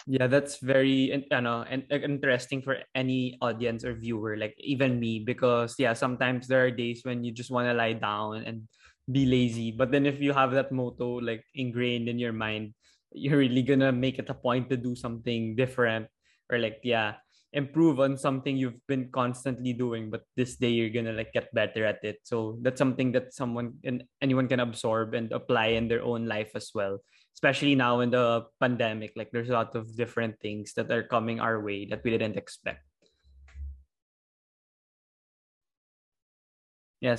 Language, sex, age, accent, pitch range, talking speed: Filipino, male, 20-39, native, 115-135 Hz, 180 wpm